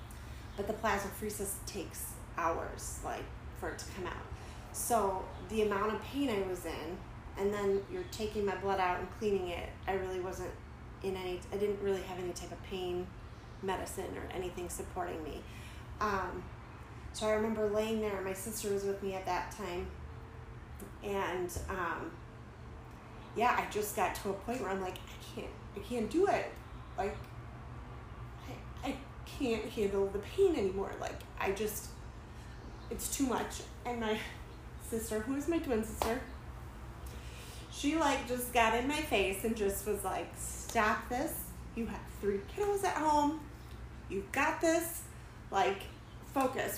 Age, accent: 30-49, American